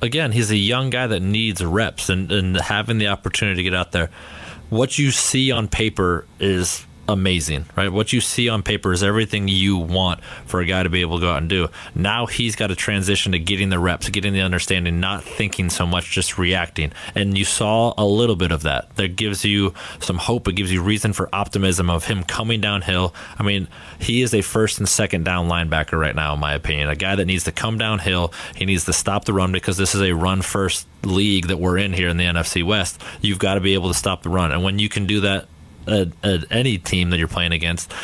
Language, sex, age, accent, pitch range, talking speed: English, male, 30-49, American, 90-105 Hz, 235 wpm